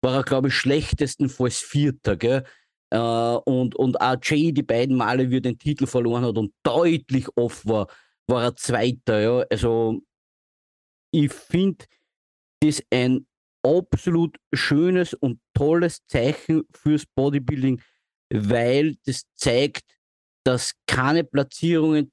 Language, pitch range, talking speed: English, 130-165 Hz, 125 wpm